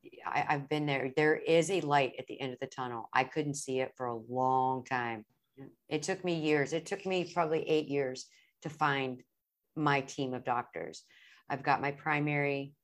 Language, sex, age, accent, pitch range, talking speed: English, female, 40-59, American, 125-150 Hz, 190 wpm